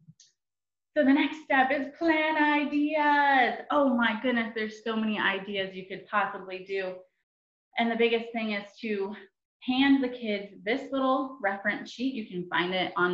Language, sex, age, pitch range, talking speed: English, female, 20-39, 185-260 Hz, 165 wpm